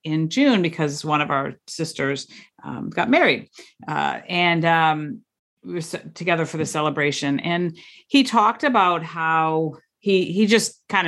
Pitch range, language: 155-230 Hz, English